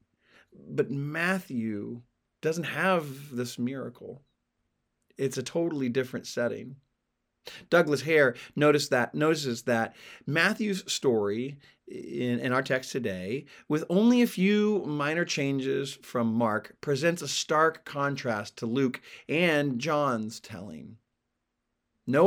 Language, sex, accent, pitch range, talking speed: English, male, American, 120-160 Hz, 110 wpm